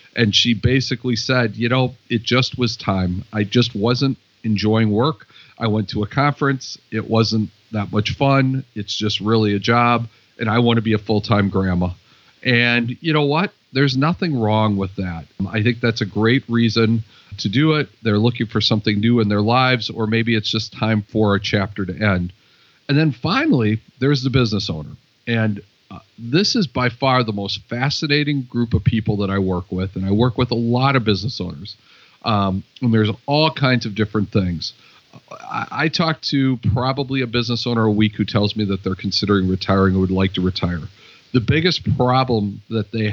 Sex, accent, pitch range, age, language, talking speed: male, American, 105-125 Hz, 50-69, English, 195 wpm